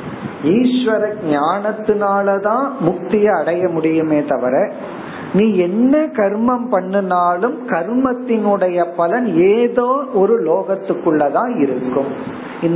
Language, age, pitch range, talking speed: Tamil, 50-69, 160-240 Hz, 65 wpm